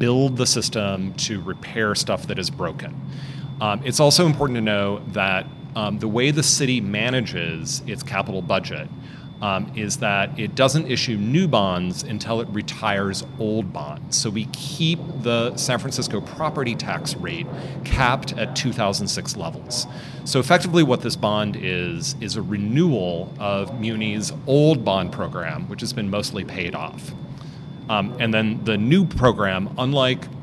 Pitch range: 110-145 Hz